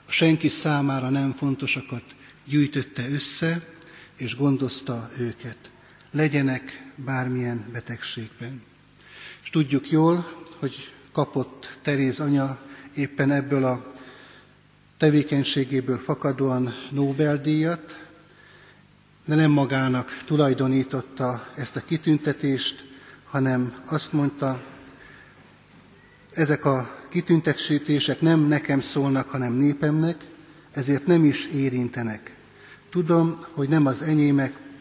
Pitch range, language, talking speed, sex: 130-150 Hz, Hungarian, 90 wpm, male